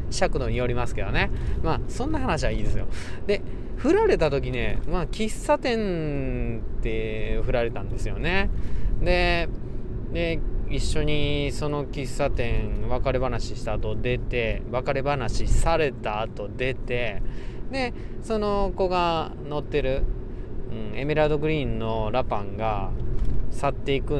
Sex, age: male, 20-39